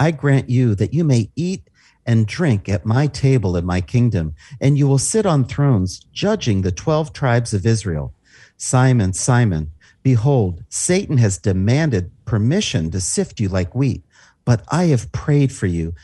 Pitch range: 100-135 Hz